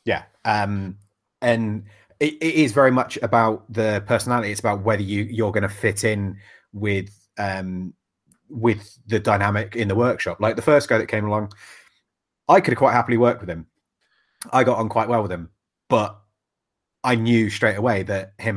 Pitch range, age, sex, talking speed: 100-115 Hz, 30-49, male, 185 wpm